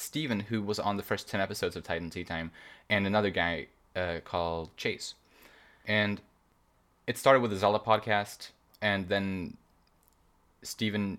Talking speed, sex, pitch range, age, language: 150 wpm, male, 85-105 Hz, 20-39, English